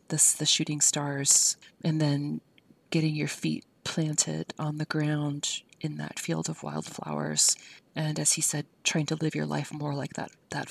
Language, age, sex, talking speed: English, 30-49, female, 175 wpm